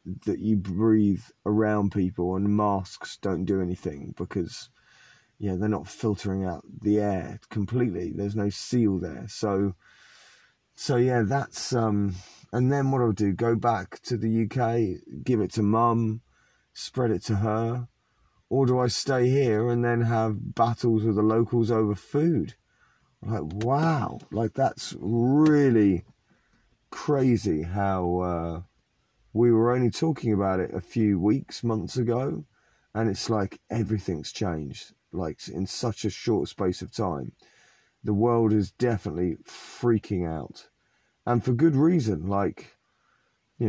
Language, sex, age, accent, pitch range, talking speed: English, male, 30-49, British, 95-120 Hz, 145 wpm